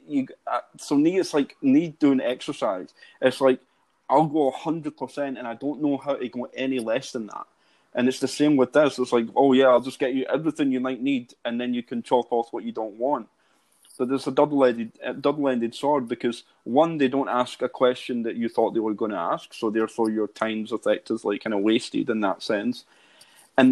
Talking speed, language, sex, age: 225 wpm, English, male, 20-39